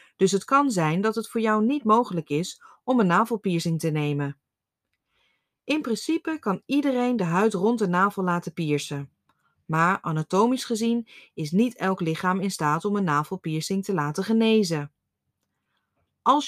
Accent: Dutch